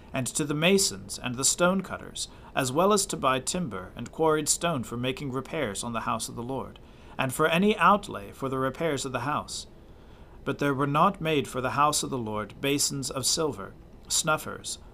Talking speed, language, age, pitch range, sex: 200 wpm, English, 40-59, 115-150 Hz, male